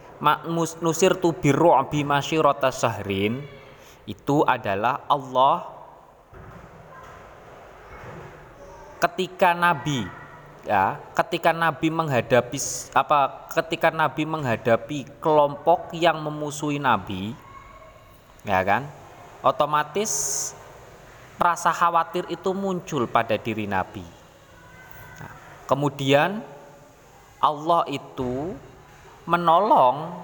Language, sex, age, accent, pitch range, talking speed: Indonesian, male, 20-39, native, 125-170 Hz, 70 wpm